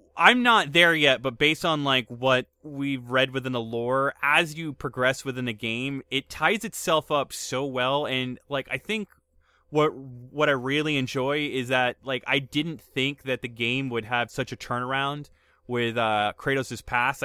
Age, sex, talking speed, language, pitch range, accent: 20-39, male, 185 wpm, English, 125-155 Hz, American